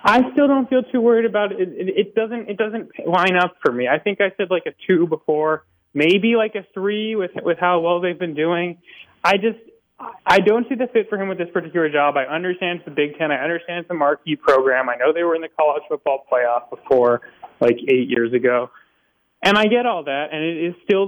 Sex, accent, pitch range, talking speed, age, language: male, American, 140-195 Hz, 235 wpm, 30-49, English